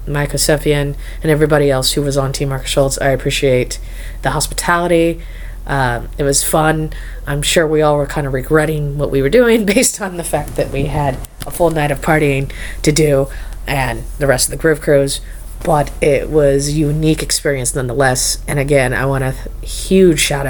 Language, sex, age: English, female, 30-49